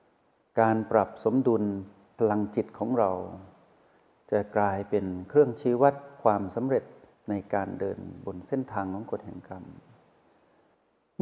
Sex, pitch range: male, 100-125 Hz